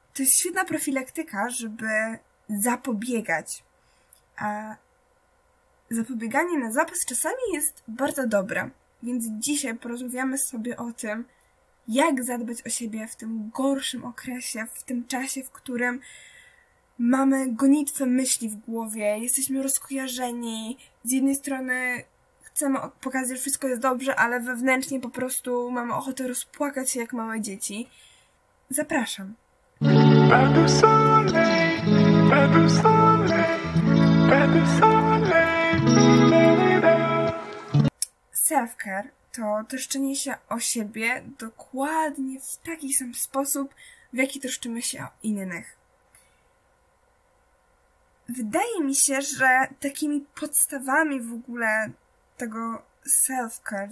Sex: female